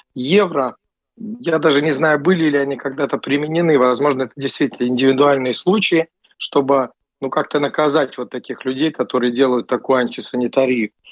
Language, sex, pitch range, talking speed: Russian, male, 130-150 Hz, 140 wpm